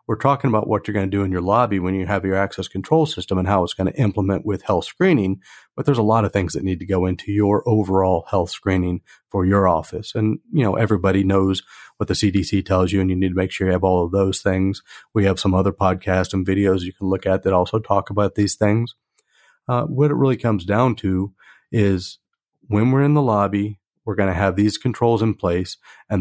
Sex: male